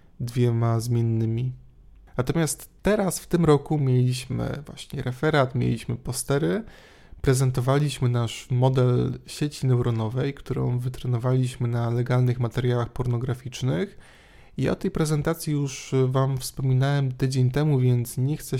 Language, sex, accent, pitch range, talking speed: Polish, male, native, 120-140 Hz, 115 wpm